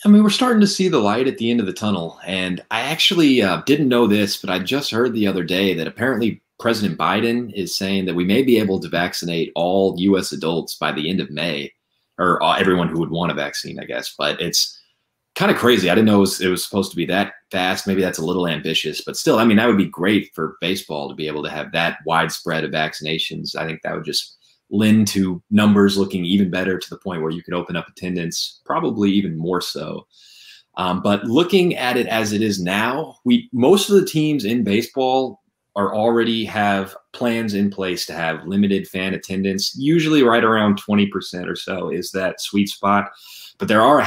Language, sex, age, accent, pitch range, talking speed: English, male, 30-49, American, 90-110 Hz, 225 wpm